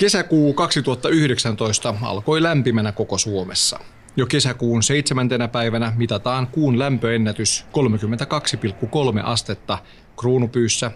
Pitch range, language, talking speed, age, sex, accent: 105-135 Hz, Finnish, 90 wpm, 30-49, male, native